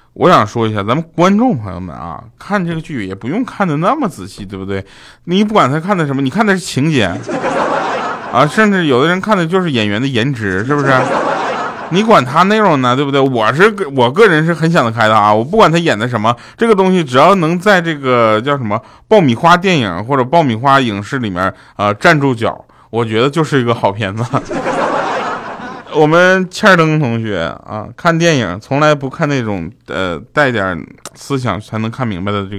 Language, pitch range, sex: Chinese, 110-160 Hz, male